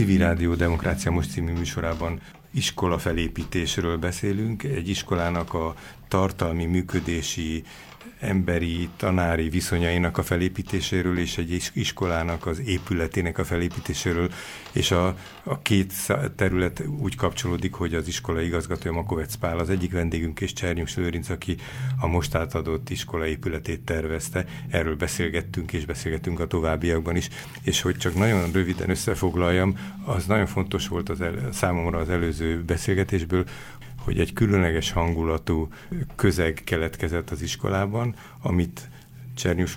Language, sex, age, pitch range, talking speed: Hungarian, male, 50-69, 85-95 Hz, 130 wpm